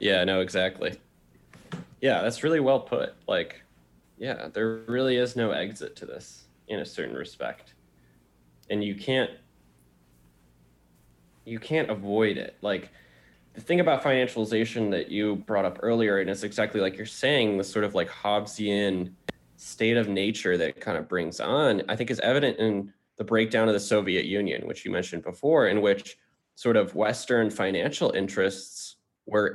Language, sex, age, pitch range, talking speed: English, male, 20-39, 100-120 Hz, 165 wpm